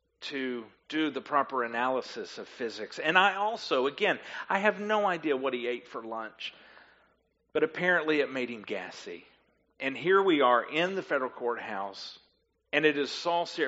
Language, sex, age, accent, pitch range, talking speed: English, male, 40-59, American, 135-215 Hz, 165 wpm